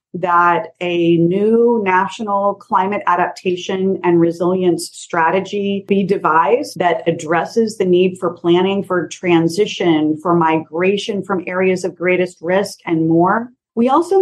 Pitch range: 170-205 Hz